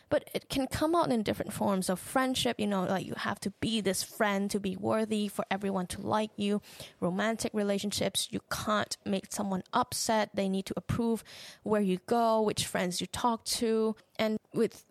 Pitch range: 185-235 Hz